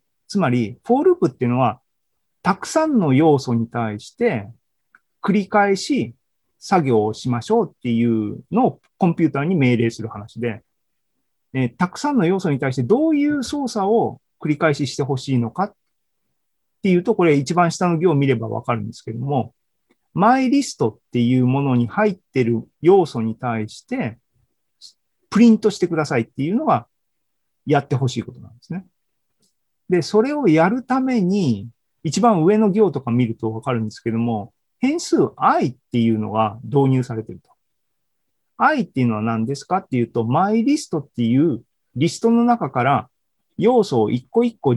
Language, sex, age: Japanese, male, 40-59